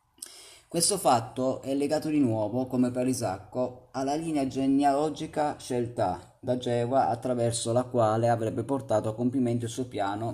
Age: 30-49